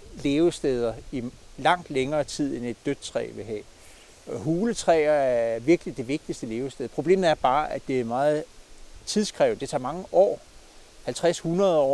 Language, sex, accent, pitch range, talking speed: Danish, male, native, 125-160 Hz, 150 wpm